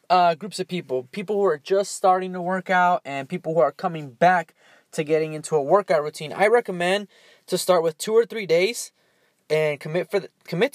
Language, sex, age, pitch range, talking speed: English, male, 20-39, 145-185 Hz, 210 wpm